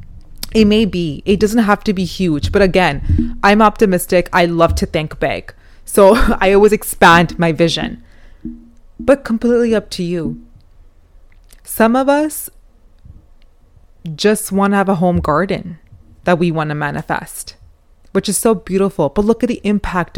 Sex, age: female, 20-39